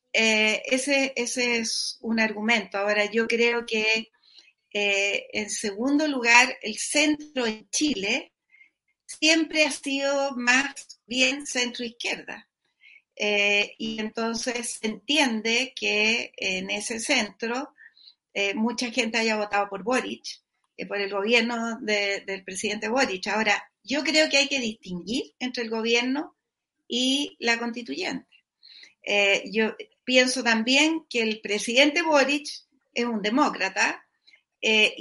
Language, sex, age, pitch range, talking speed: Spanish, female, 40-59, 215-280 Hz, 120 wpm